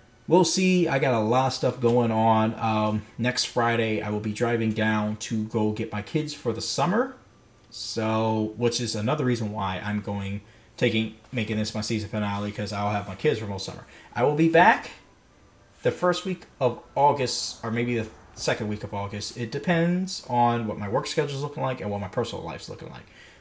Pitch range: 105-140 Hz